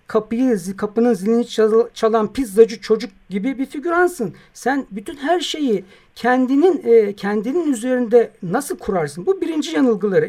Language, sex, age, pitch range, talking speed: Turkish, male, 60-79, 205-275 Hz, 120 wpm